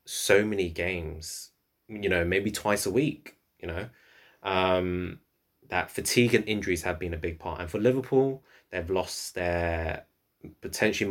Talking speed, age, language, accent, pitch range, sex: 150 wpm, 20-39, English, British, 85-110 Hz, male